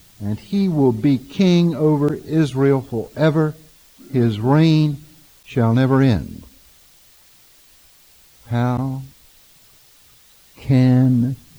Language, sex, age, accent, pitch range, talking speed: English, male, 60-79, American, 95-140 Hz, 80 wpm